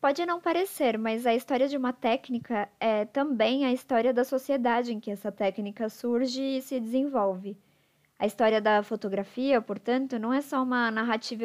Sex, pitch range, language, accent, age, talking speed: male, 205-255 Hz, Portuguese, Brazilian, 20-39, 175 wpm